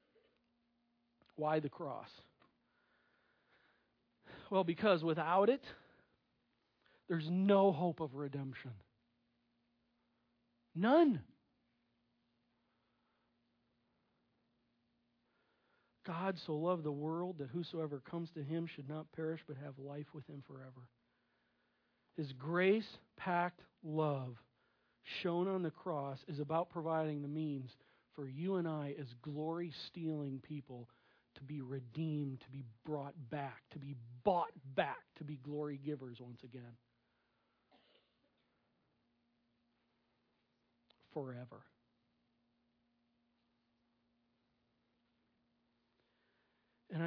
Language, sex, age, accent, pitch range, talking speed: English, male, 40-59, American, 120-170 Hz, 90 wpm